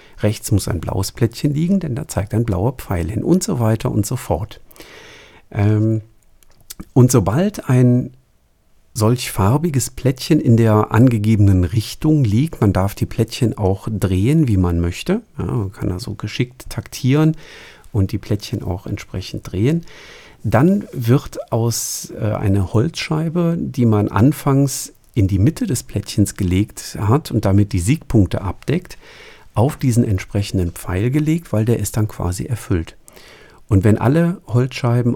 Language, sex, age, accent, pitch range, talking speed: German, male, 50-69, German, 95-125 Hz, 150 wpm